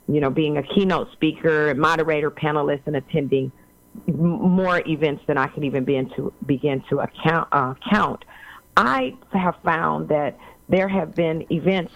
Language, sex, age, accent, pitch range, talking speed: English, female, 40-59, American, 155-190 Hz, 135 wpm